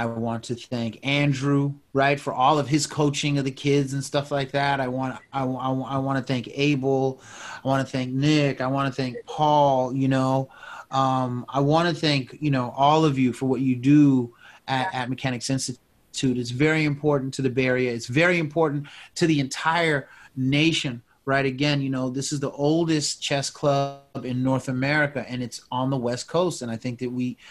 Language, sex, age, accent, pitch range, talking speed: English, male, 30-49, American, 135-165 Hz, 205 wpm